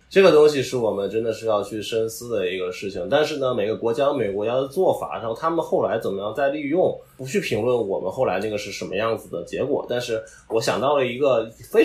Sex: male